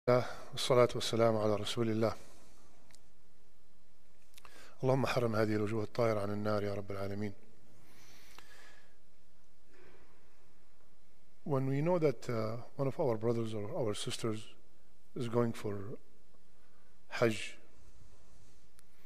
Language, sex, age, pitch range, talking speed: English, male, 50-69, 110-135 Hz, 85 wpm